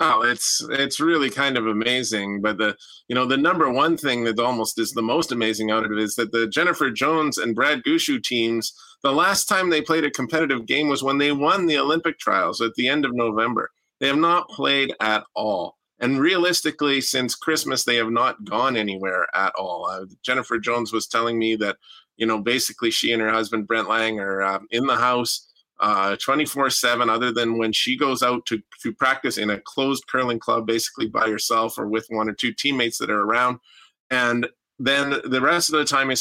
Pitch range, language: 115-140 Hz, English